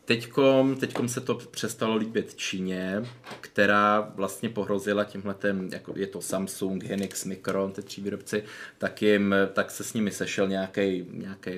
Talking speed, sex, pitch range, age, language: 145 wpm, male, 95-100 Hz, 20-39, Czech